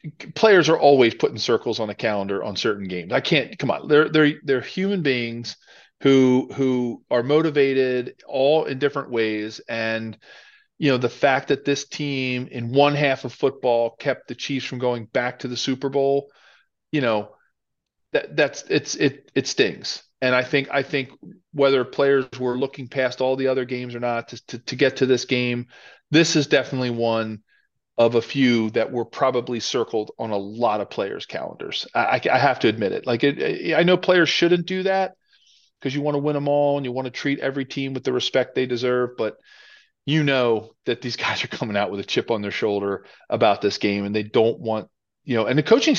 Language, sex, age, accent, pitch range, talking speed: English, male, 40-59, American, 115-140 Hz, 205 wpm